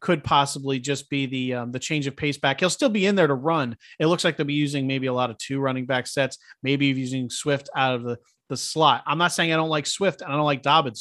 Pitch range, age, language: 135-180 Hz, 30-49, English